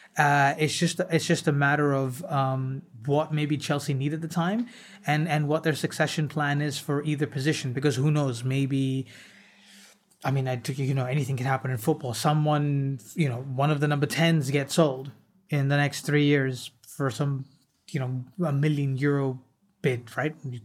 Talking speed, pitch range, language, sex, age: 190 wpm, 140-155 Hz, English, male, 30-49